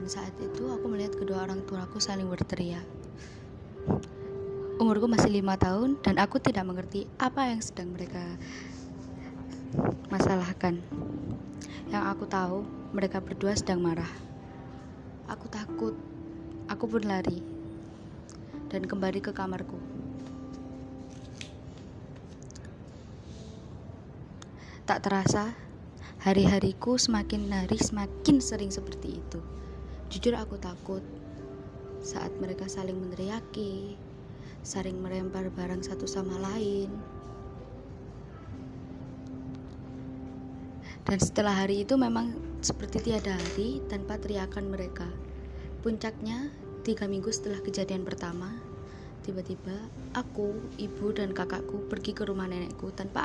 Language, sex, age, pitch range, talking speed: Indonesian, female, 20-39, 160-205 Hz, 100 wpm